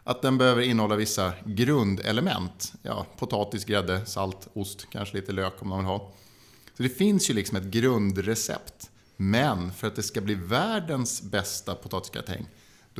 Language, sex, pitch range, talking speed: Swedish, male, 100-125 Hz, 160 wpm